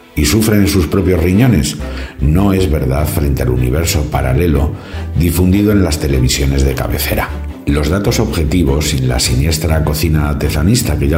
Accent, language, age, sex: Spanish, Spanish, 60-79, male